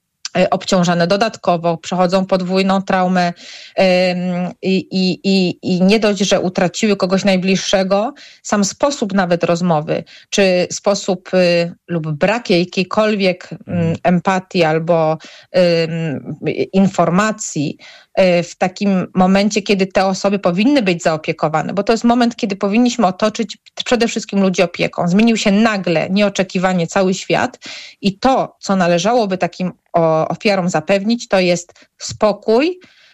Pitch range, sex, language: 175-205 Hz, female, Polish